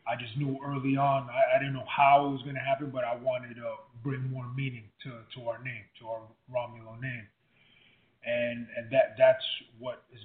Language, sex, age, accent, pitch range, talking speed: English, male, 20-39, American, 120-145 Hz, 215 wpm